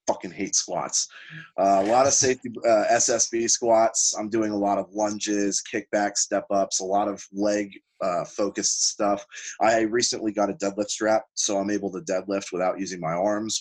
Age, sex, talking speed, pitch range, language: 20-39, male, 185 wpm, 100-115 Hz, English